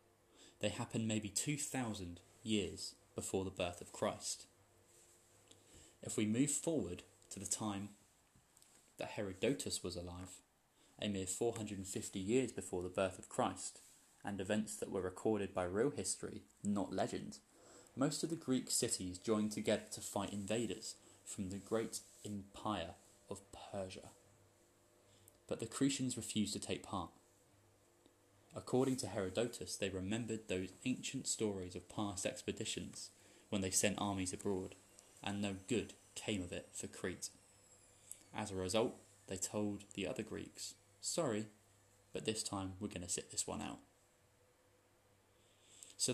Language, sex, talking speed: English, male, 140 wpm